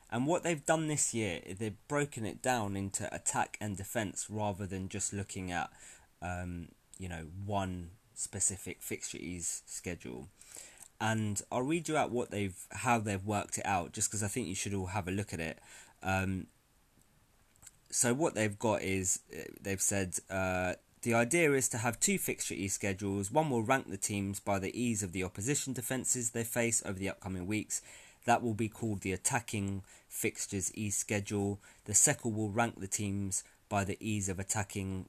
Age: 20-39